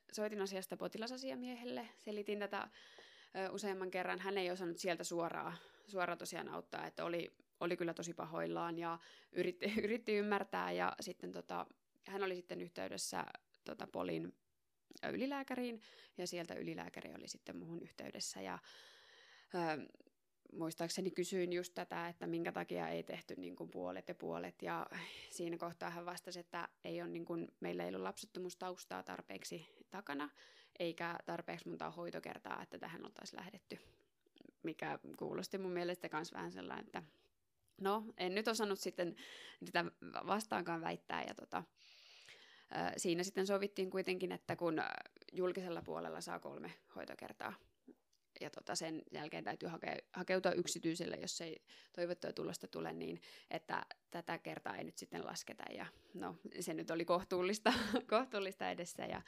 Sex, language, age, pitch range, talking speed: female, Finnish, 20-39, 165-200 Hz, 140 wpm